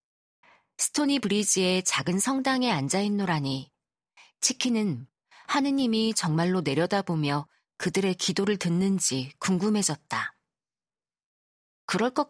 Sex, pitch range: female, 155-210 Hz